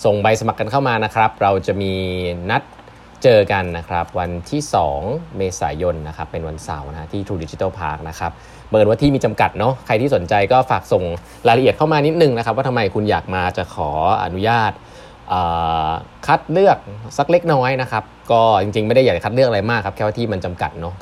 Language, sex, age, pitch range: Thai, male, 20-39, 85-120 Hz